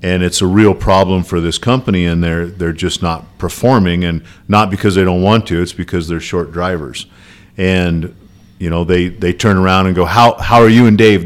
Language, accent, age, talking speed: English, American, 50-69, 220 wpm